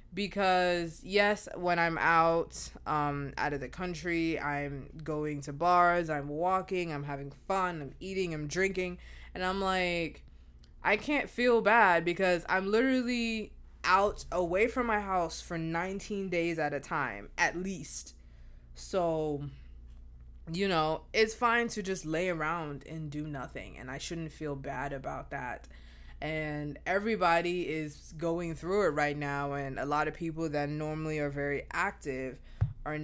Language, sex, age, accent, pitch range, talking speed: English, female, 20-39, American, 140-185 Hz, 155 wpm